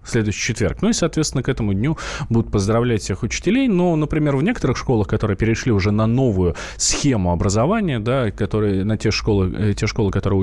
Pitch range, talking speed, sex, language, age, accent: 105-150 Hz, 190 wpm, male, Russian, 20-39, native